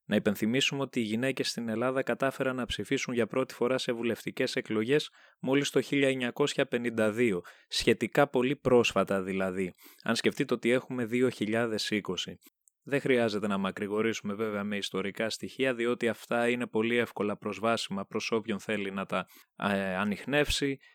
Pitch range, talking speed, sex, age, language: 105-135 Hz, 135 wpm, male, 20-39, Greek